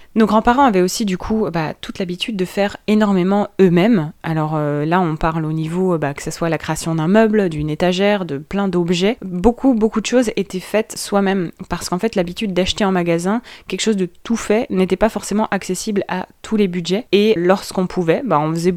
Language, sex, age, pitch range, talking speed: French, female, 20-39, 175-215 Hz, 210 wpm